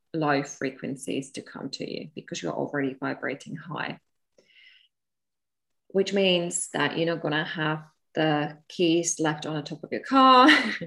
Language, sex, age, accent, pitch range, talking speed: English, female, 20-39, British, 155-185 Hz, 150 wpm